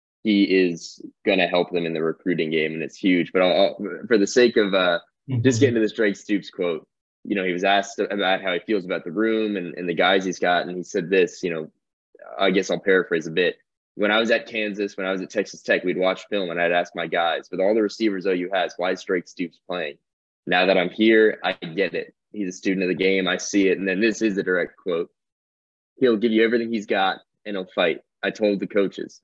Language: English